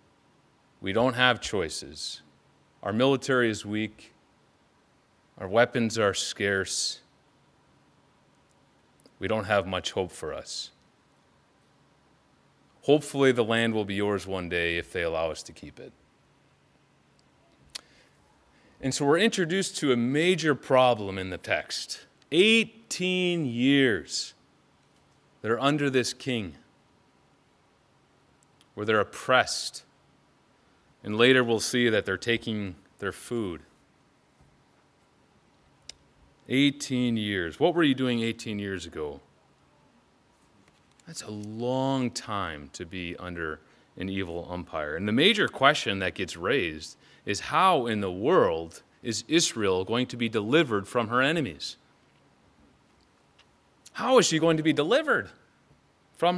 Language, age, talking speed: English, 30-49, 120 wpm